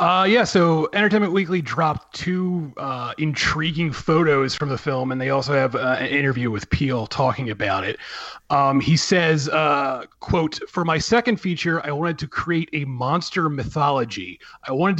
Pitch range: 135-170 Hz